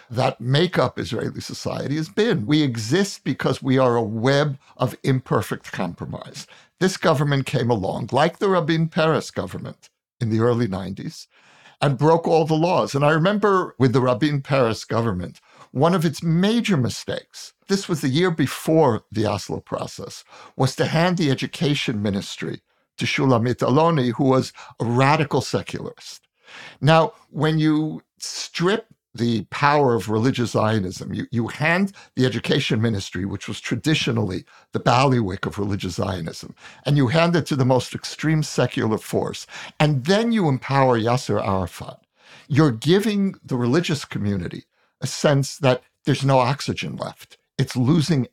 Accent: American